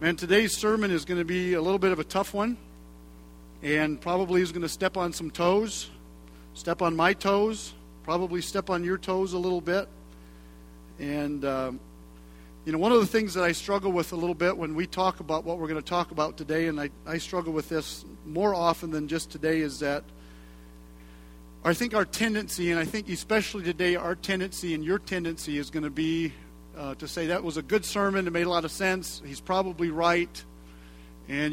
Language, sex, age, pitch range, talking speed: English, male, 50-69, 125-185 Hz, 210 wpm